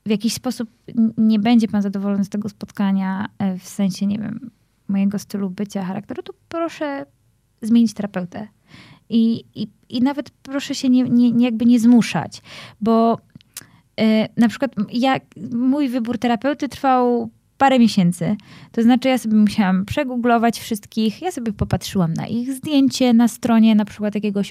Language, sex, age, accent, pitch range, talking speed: Polish, female, 20-39, native, 190-240 Hz, 140 wpm